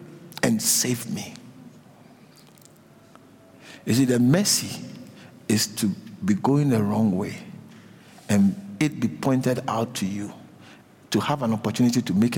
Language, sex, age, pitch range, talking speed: English, male, 50-69, 140-215 Hz, 125 wpm